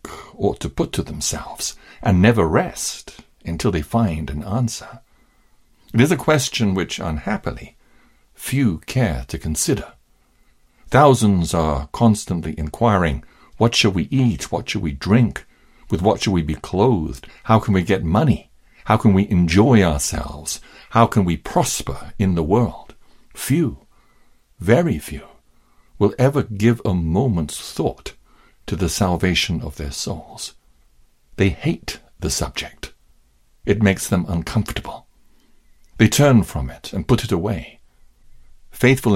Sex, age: male, 60-79